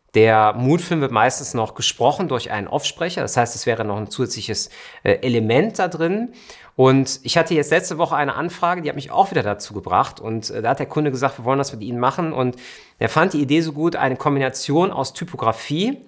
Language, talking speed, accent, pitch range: German, 215 wpm, German, 115-150 Hz